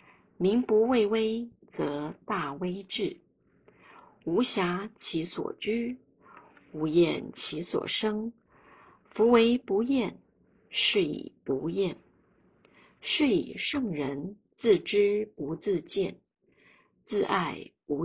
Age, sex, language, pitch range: 50-69, female, Chinese, 170-225 Hz